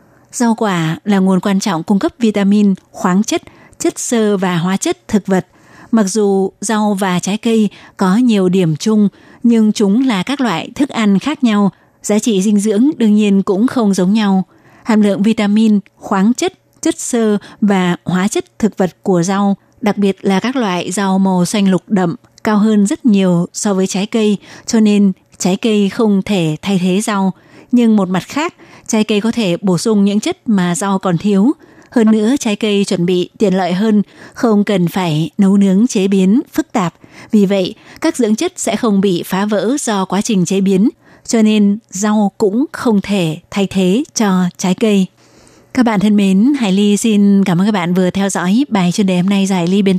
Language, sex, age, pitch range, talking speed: Vietnamese, female, 20-39, 185-220 Hz, 205 wpm